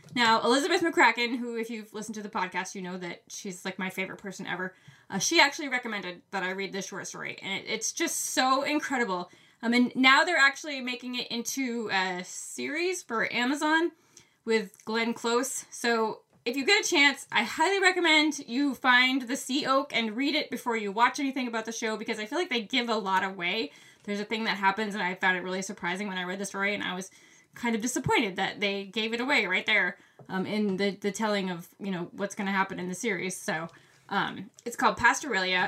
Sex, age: female, 20-39